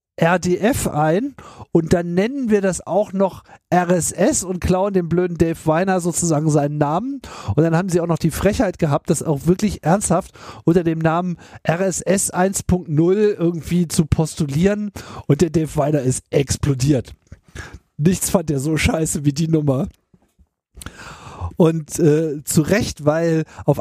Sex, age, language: male, 50-69, German